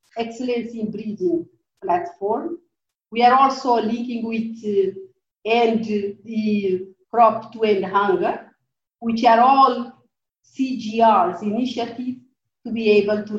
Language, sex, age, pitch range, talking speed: English, female, 50-69, 200-245 Hz, 115 wpm